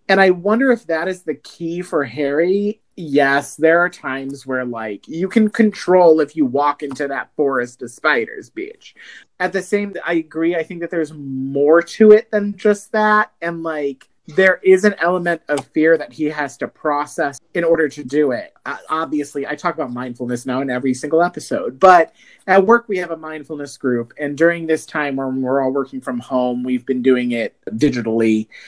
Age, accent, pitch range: 30-49, American, 140-190 Hz